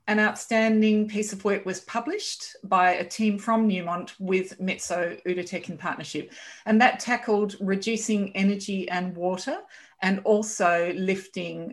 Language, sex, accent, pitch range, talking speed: English, female, Australian, 180-220 Hz, 140 wpm